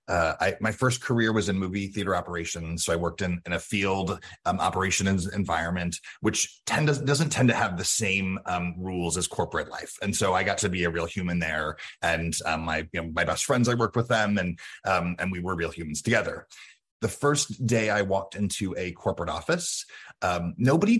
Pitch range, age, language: 90-120 Hz, 30-49, English